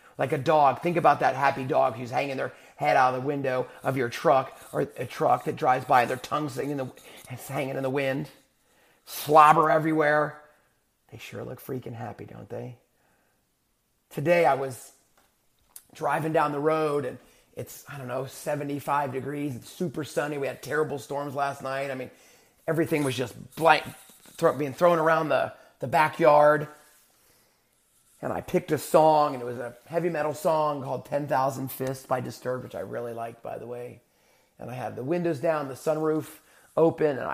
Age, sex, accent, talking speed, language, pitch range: 30-49, male, American, 185 wpm, English, 125-155 Hz